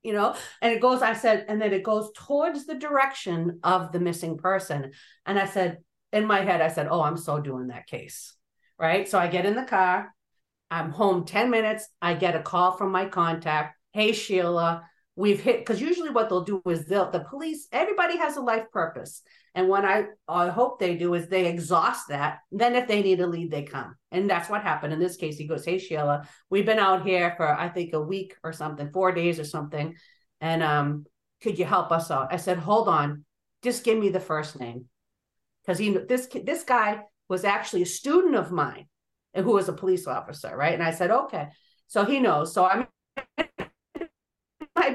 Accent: American